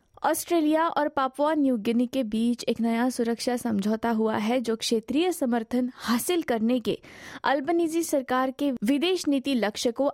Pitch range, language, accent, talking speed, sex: 235-290 Hz, Hindi, native, 155 wpm, female